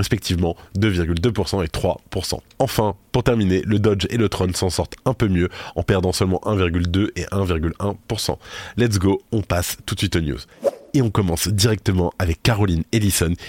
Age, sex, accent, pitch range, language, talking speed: 20-39, male, French, 85-100 Hz, French, 175 wpm